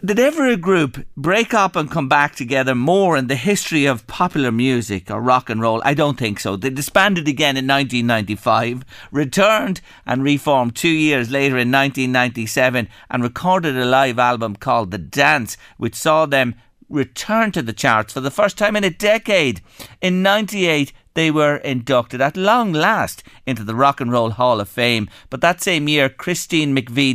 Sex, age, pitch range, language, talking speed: male, 50-69, 125-180 Hz, English, 180 wpm